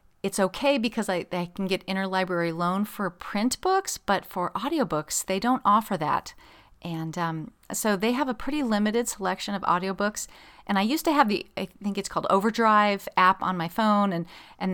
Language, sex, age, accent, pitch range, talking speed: English, female, 30-49, American, 170-210 Hz, 190 wpm